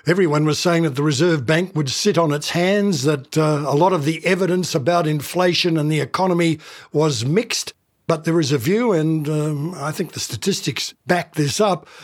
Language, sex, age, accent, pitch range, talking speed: English, male, 60-79, Australian, 150-180 Hz, 200 wpm